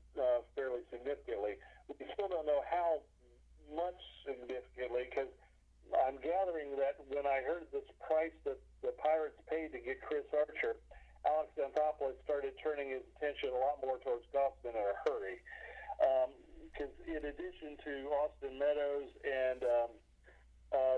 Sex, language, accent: male, English, American